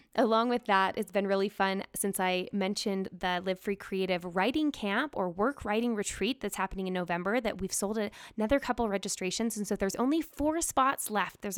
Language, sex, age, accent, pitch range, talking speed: English, female, 20-39, American, 185-225 Hz, 195 wpm